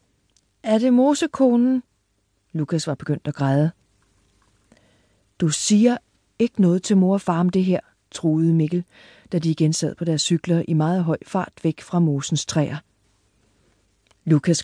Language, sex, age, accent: Danish, female, 40-59, native